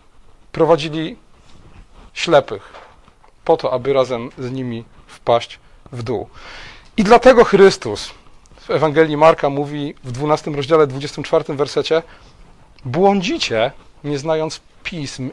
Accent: native